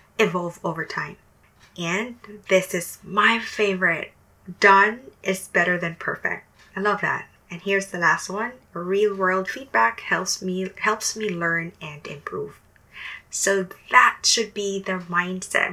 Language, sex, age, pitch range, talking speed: English, female, 20-39, 165-205 Hz, 140 wpm